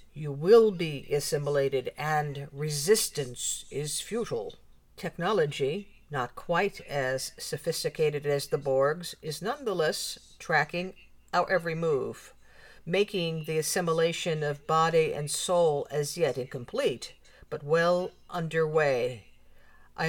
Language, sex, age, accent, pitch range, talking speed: English, female, 50-69, American, 145-175 Hz, 110 wpm